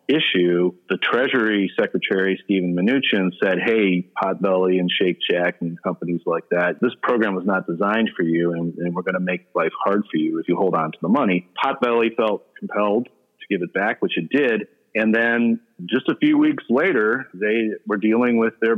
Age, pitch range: 40-59, 90-110 Hz